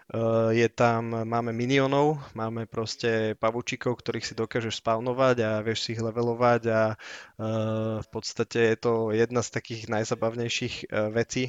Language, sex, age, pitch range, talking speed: Slovak, male, 20-39, 115-125 Hz, 145 wpm